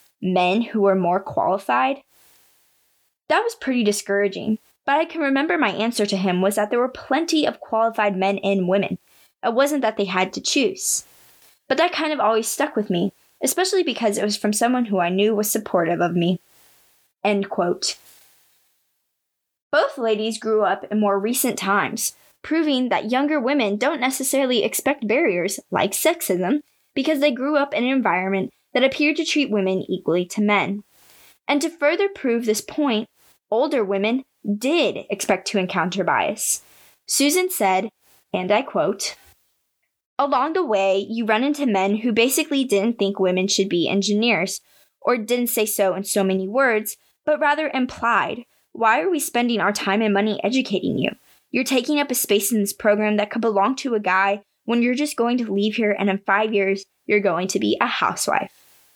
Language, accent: English, American